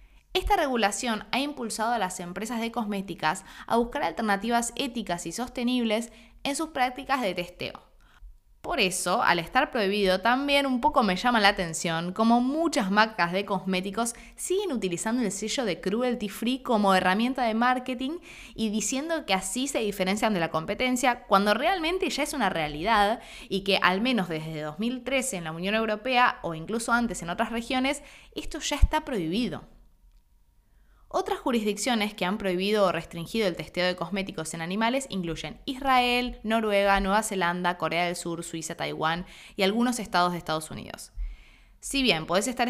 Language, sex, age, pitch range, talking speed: Spanish, female, 20-39, 180-245 Hz, 165 wpm